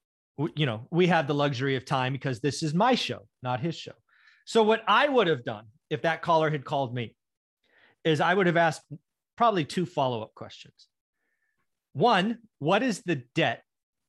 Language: English